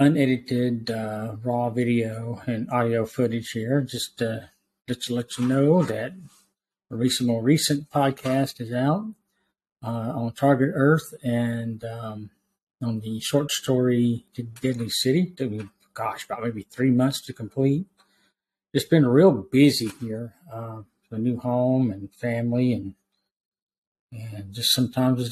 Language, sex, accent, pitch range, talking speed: English, male, American, 115-140 Hz, 145 wpm